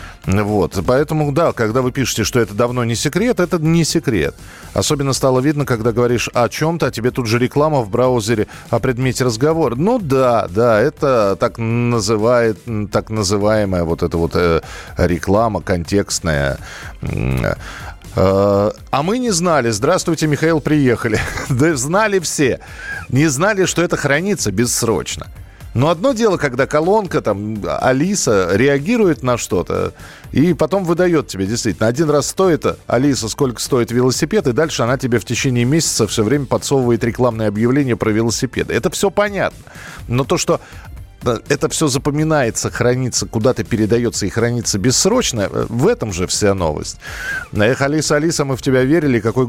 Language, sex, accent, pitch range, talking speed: Russian, male, native, 110-150 Hz, 155 wpm